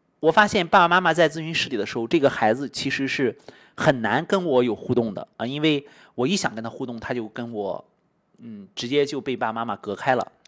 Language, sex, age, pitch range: Chinese, male, 30-49, 120-165 Hz